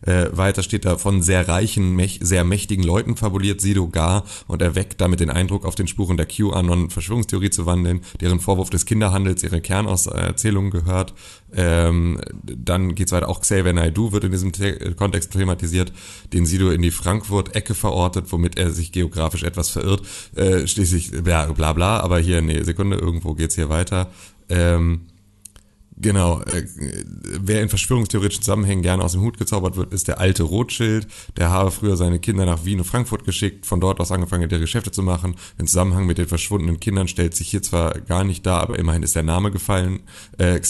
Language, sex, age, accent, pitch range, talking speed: German, male, 30-49, German, 90-100 Hz, 190 wpm